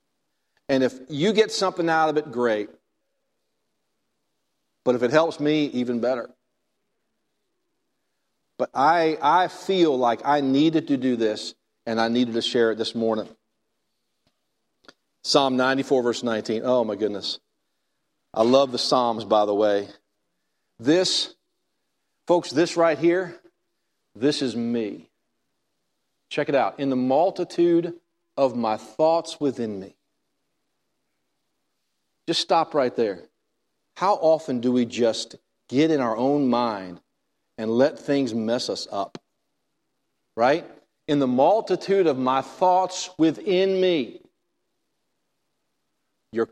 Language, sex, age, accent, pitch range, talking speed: English, male, 50-69, American, 115-165 Hz, 125 wpm